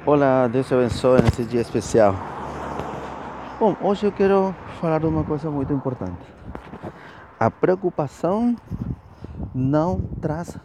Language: Portuguese